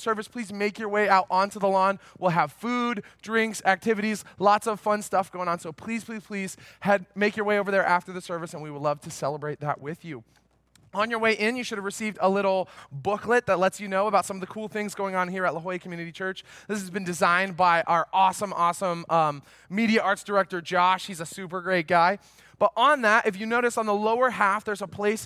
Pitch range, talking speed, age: 165-205 Hz, 240 wpm, 20-39